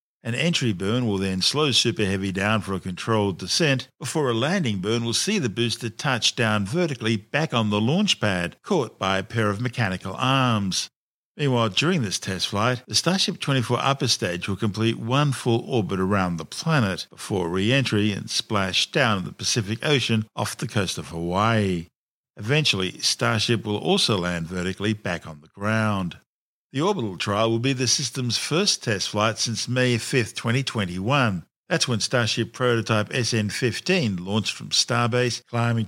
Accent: Australian